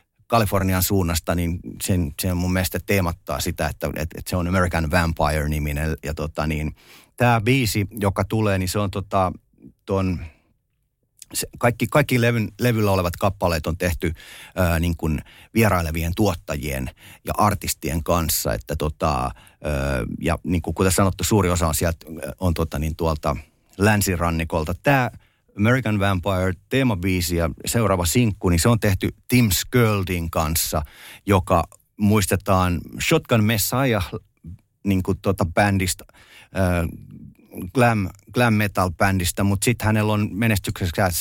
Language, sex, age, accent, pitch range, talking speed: Finnish, male, 30-49, native, 85-105 Hz, 125 wpm